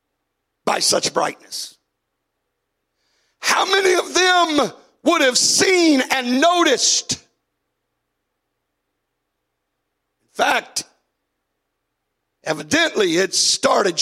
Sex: male